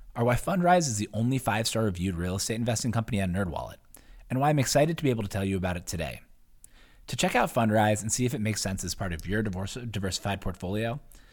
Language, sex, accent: English, male, American